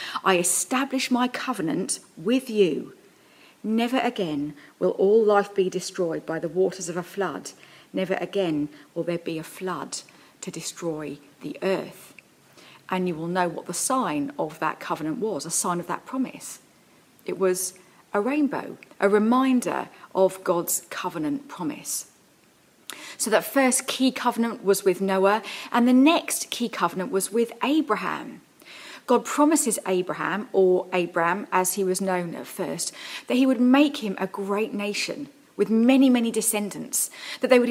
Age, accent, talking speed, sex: 40-59, British, 155 wpm, female